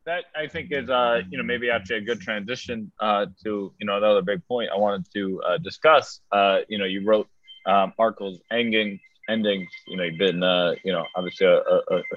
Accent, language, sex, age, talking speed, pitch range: American, English, male, 20-39, 195 wpm, 95-110 Hz